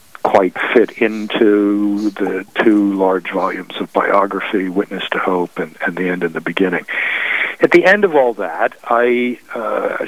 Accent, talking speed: American, 165 wpm